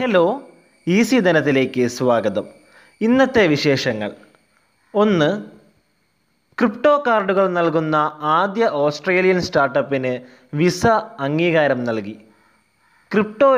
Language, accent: Malayalam, native